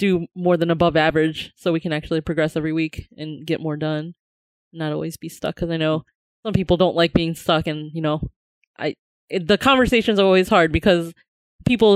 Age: 20-39